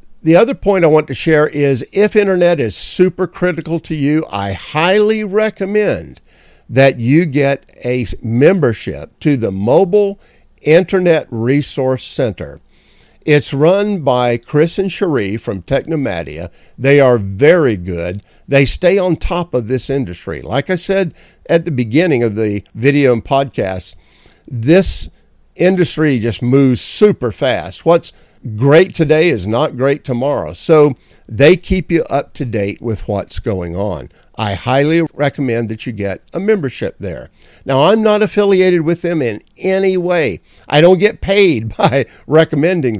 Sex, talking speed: male, 150 wpm